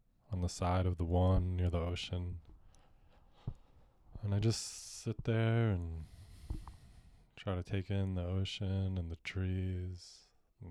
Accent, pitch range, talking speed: American, 80-100 Hz, 140 wpm